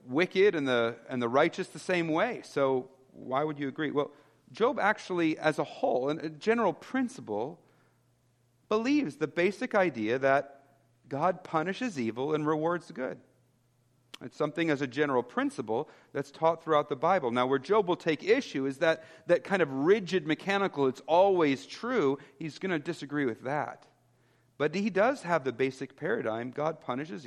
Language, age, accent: English, 40-59, American